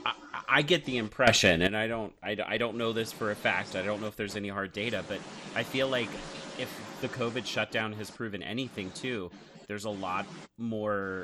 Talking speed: 215 wpm